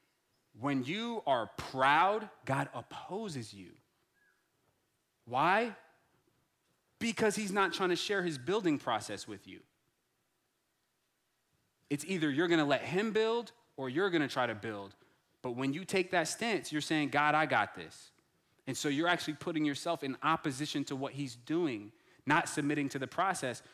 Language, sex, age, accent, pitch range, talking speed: English, male, 30-49, American, 130-175 Hz, 155 wpm